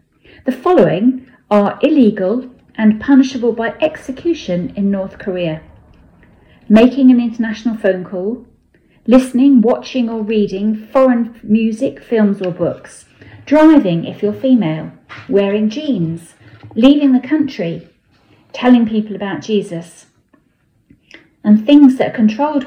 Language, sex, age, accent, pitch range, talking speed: English, female, 40-59, British, 185-260 Hz, 115 wpm